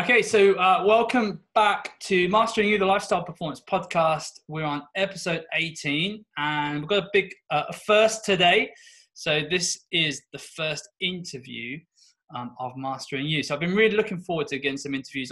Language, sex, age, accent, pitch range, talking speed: English, male, 20-39, British, 135-180 Hz, 170 wpm